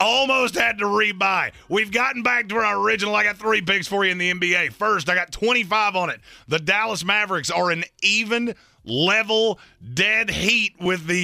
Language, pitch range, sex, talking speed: English, 155-195 Hz, male, 190 wpm